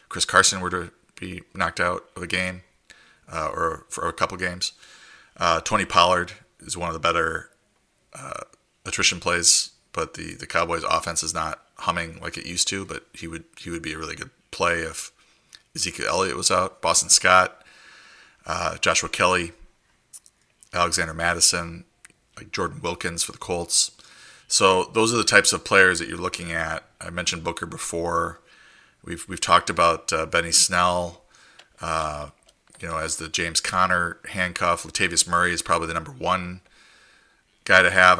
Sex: male